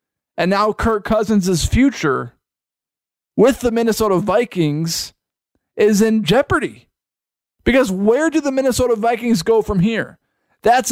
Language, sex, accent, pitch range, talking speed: English, male, American, 180-230 Hz, 120 wpm